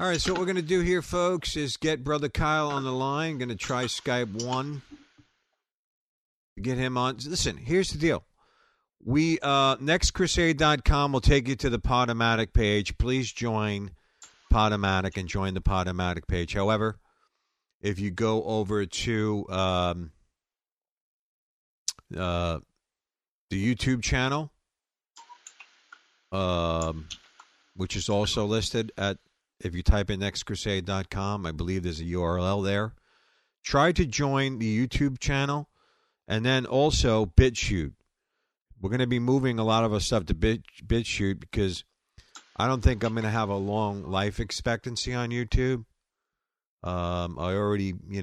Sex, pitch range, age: male, 90-130 Hz, 50-69